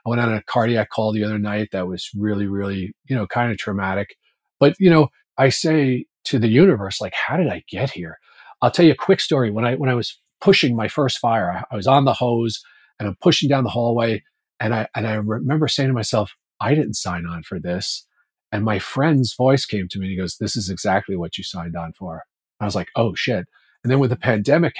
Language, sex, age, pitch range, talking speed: English, male, 40-59, 100-130 Hz, 245 wpm